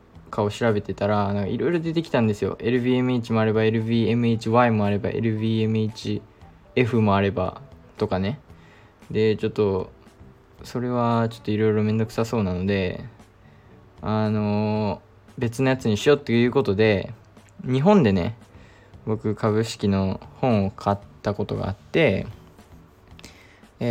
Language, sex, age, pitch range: Japanese, male, 20-39, 100-125 Hz